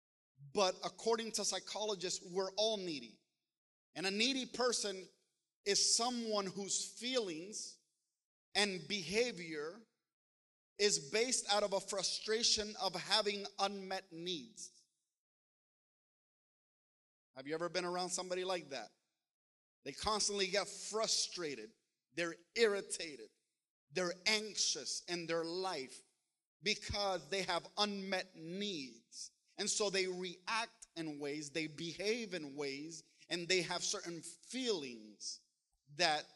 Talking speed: 110 wpm